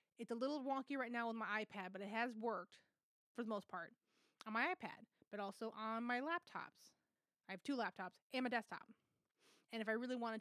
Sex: female